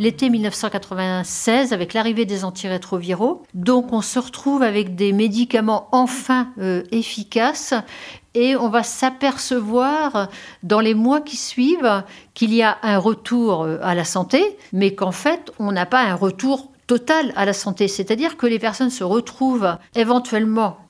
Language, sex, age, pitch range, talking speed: French, female, 60-79, 190-250 Hz, 150 wpm